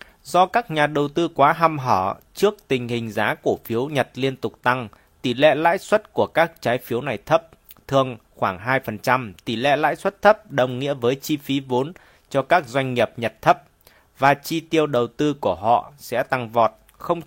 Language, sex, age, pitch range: Chinese, male, 20-39, 120-150 Hz